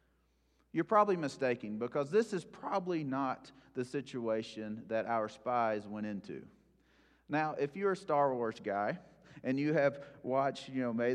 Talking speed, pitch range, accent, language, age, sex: 155 wpm, 105-145 Hz, American, English, 40-59, male